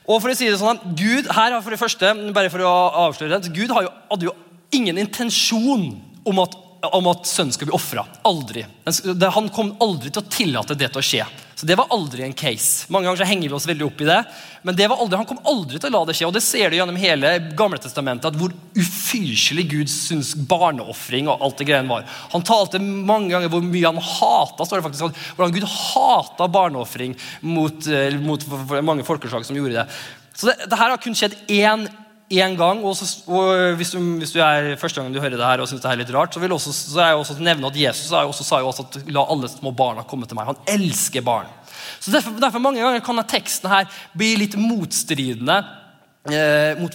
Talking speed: 215 wpm